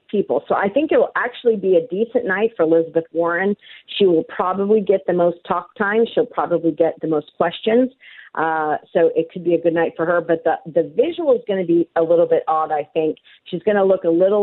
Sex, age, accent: female, 40-59, American